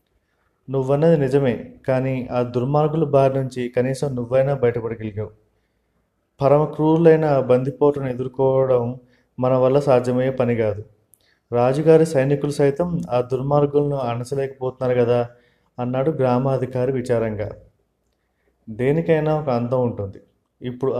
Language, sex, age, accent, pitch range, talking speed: Telugu, male, 30-49, native, 120-140 Hz, 95 wpm